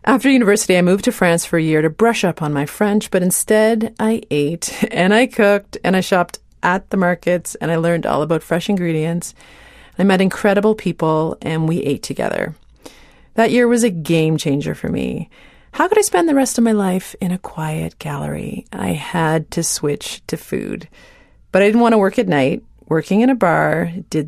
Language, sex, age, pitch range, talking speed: English, female, 40-59, 165-225 Hz, 205 wpm